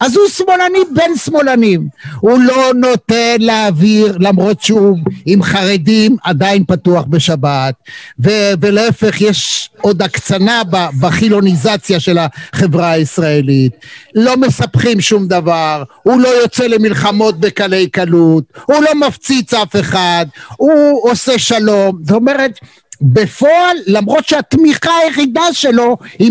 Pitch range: 190-265 Hz